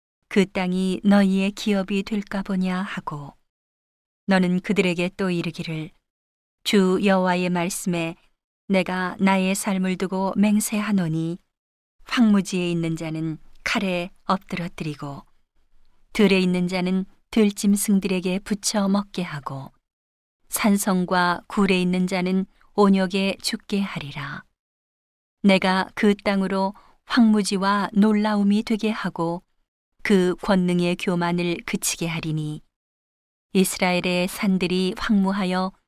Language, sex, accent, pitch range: Korean, female, native, 175-200 Hz